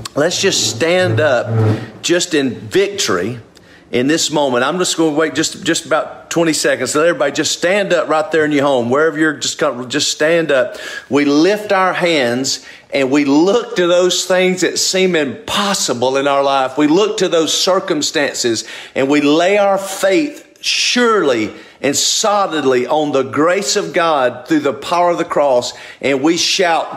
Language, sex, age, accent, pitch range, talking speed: English, male, 40-59, American, 135-190 Hz, 180 wpm